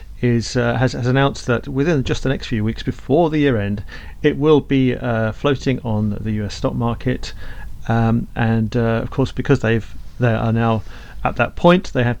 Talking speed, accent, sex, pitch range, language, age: 200 wpm, British, male, 115-130 Hz, English, 40-59